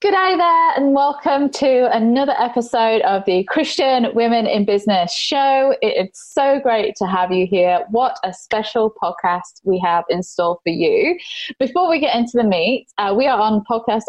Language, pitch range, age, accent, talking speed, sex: English, 180-245 Hz, 20-39, British, 180 wpm, female